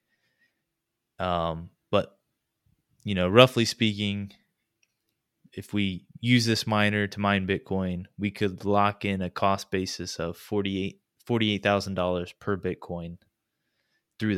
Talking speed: 115 wpm